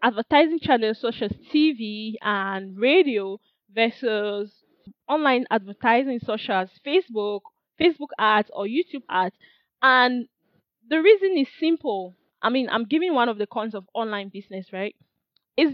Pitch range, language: 220-285 Hz, English